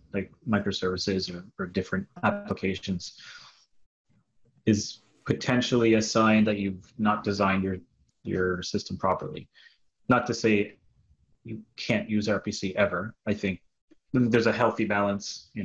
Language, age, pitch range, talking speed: English, 30-49, 100-115 Hz, 125 wpm